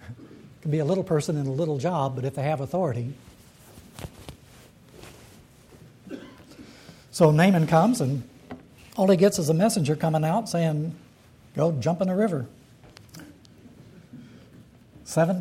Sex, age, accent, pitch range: male, 60-79, American, 125-165 Hz